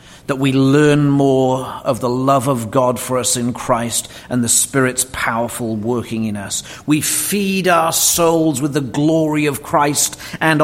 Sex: male